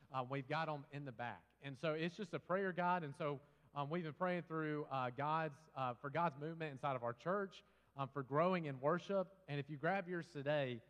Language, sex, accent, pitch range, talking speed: English, male, American, 125-155 Hz, 230 wpm